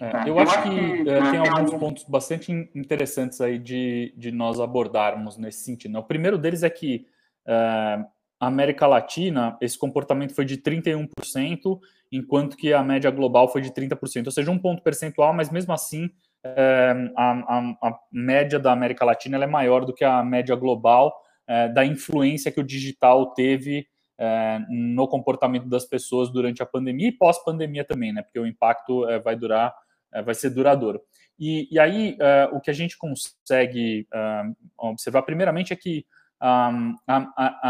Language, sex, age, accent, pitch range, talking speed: Portuguese, male, 20-39, Brazilian, 120-150 Hz, 170 wpm